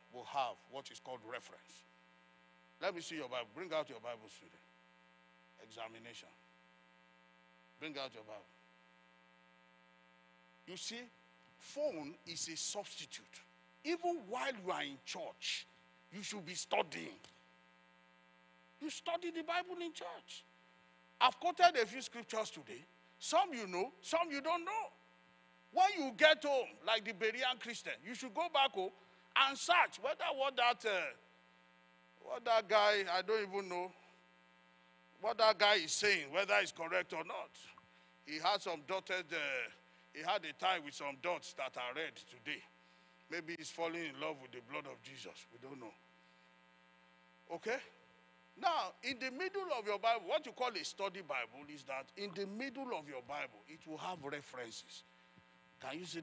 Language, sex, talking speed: English, male, 160 wpm